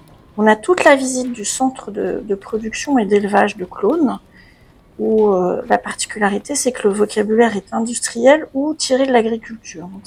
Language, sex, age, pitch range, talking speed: French, female, 50-69, 215-265 Hz, 175 wpm